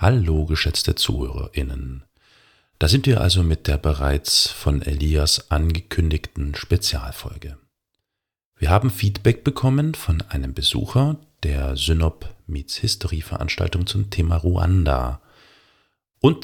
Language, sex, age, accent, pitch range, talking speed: German, male, 40-59, German, 80-100 Hz, 110 wpm